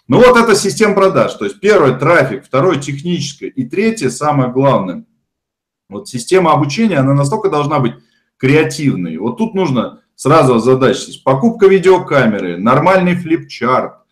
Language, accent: Russian, native